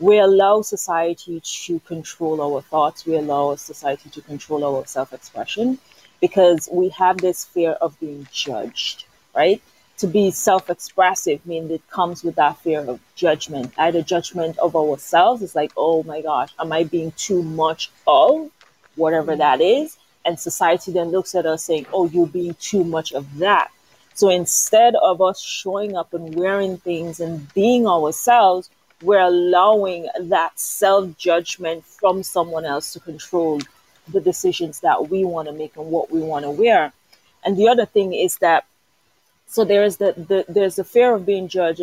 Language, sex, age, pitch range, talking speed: English, female, 30-49, 160-190 Hz, 165 wpm